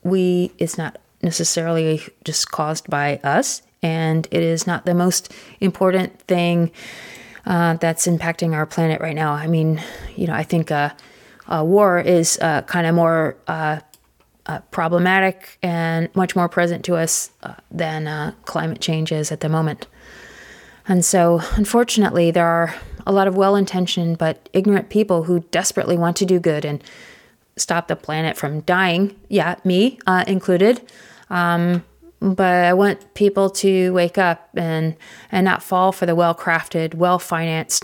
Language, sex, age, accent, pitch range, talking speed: English, female, 30-49, American, 160-185 Hz, 150 wpm